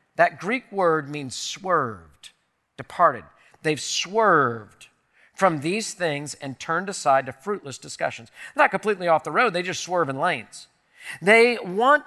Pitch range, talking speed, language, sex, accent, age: 180-245 Hz, 145 wpm, English, male, American, 40-59